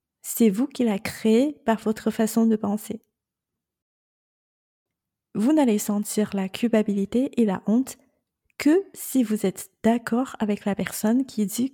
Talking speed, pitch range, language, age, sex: 145 wpm, 200-240 Hz, French, 30-49, female